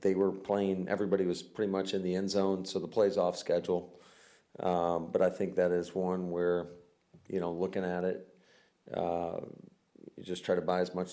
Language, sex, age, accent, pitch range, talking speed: English, male, 40-59, American, 85-95 Hz, 200 wpm